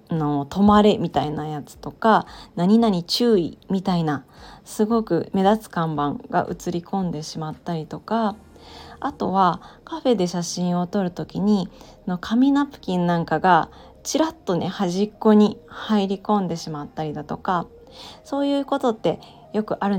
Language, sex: Japanese, female